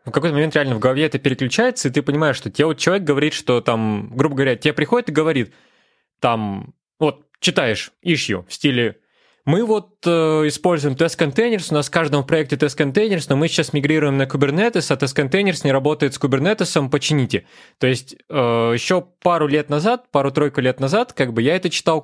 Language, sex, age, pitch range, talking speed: Russian, male, 20-39, 130-170 Hz, 200 wpm